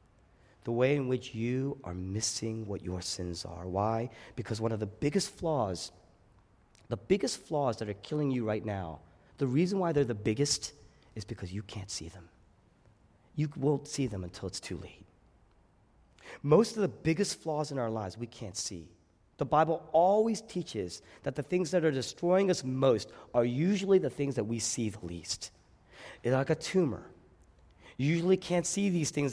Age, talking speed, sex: 30-49, 180 wpm, male